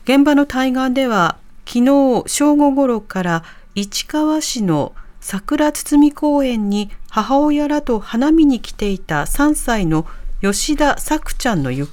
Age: 40-59